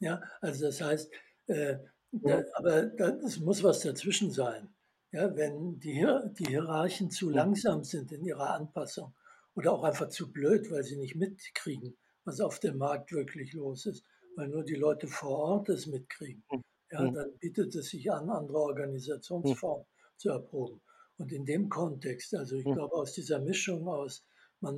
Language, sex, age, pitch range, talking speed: German, male, 60-79, 140-185 Hz, 170 wpm